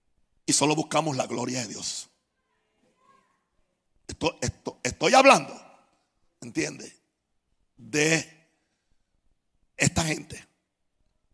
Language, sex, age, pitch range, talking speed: Spanish, male, 60-79, 145-195 Hz, 75 wpm